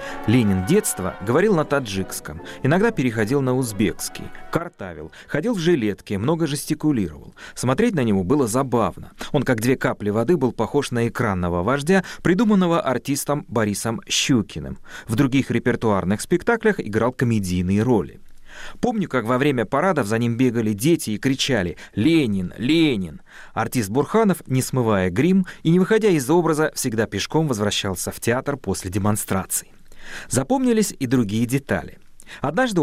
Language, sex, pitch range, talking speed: Russian, male, 105-150 Hz, 140 wpm